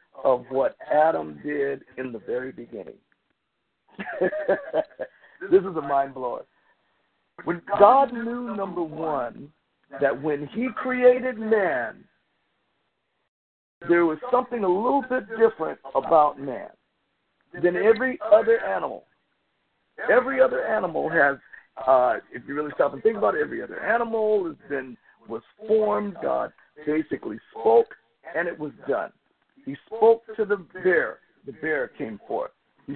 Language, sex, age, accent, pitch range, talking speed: English, male, 50-69, American, 170-250 Hz, 130 wpm